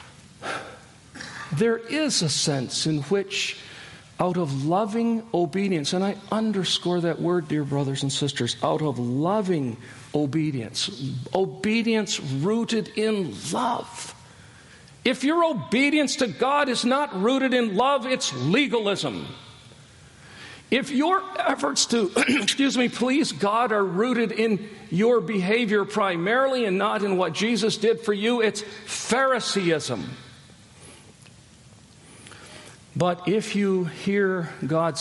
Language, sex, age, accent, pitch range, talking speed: English, male, 50-69, American, 145-220 Hz, 115 wpm